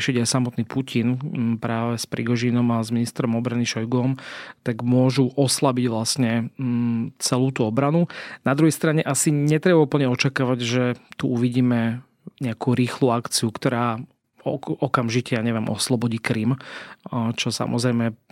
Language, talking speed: Slovak, 130 wpm